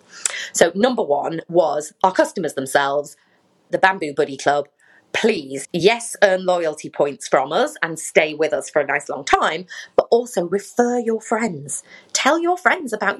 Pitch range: 180-275 Hz